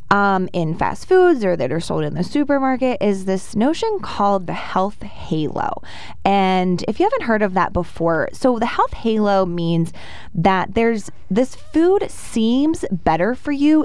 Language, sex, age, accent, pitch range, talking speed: English, female, 20-39, American, 180-255 Hz, 170 wpm